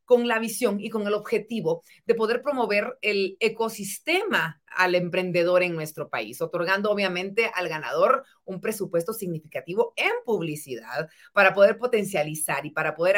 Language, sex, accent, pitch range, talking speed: Spanish, female, Mexican, 170-225 Hz, 145 wpm